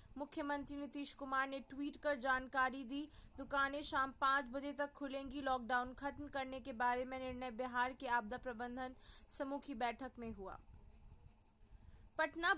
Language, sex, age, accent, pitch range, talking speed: Hindi, female, 20-39, native, 245-280 Hz, 150 wpm